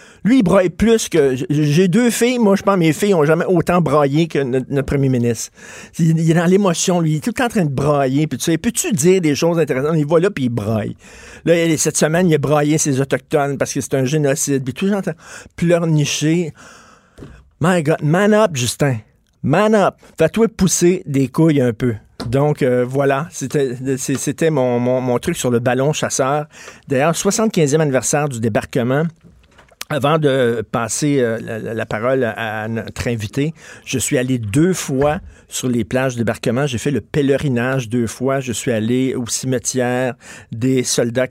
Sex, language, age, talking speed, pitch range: male, French, 50-69, 185 wpm, 125-160 Hz